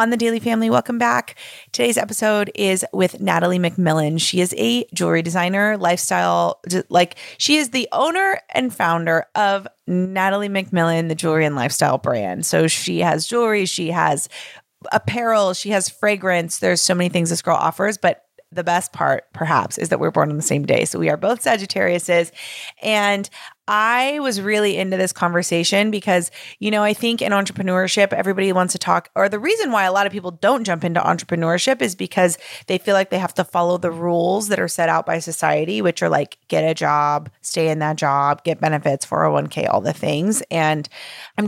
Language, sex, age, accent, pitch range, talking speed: English, female, 30-49, American, 170-205 Hz, 190 wpm